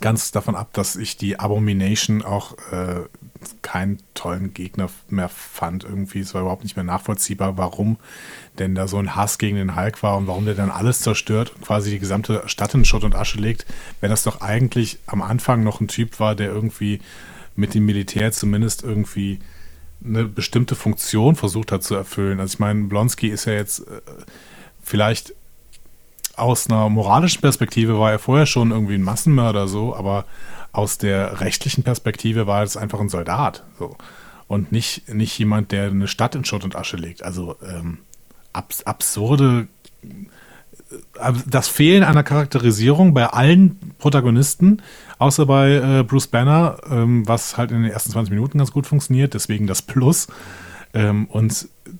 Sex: male